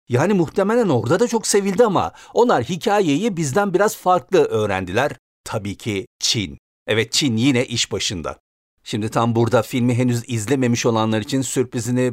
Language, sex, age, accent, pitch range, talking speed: Turkish, male, 50-69, native, 110-145 Hz, 150 wpm